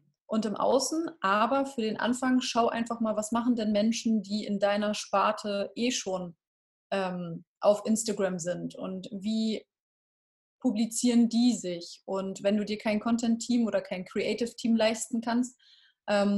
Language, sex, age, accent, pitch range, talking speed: German, female, 30-49, German, 195-235 Hz, 150 wpm